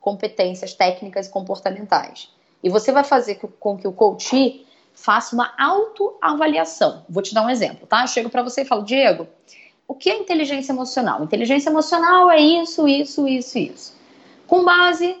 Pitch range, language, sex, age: 210-295 Hz, Portuguese, female, 10-29